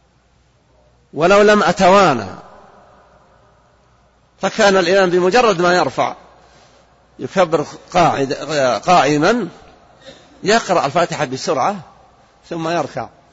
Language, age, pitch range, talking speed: Arabic, 50-69, 150-195 Hz, 70 wpm